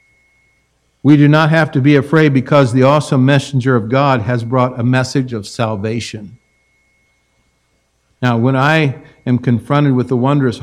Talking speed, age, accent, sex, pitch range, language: 150 wpm, 60-79, American, male, 120-170 Hz, English